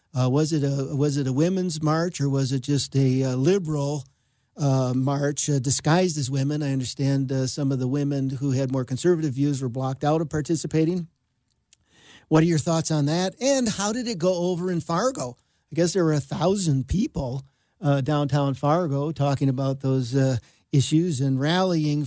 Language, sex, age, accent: English, male, 50-69, American